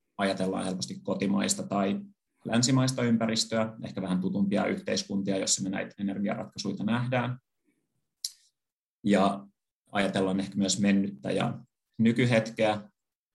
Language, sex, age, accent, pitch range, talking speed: Finnish, male, 30-49, native, 100-110 Hz, 100 wpm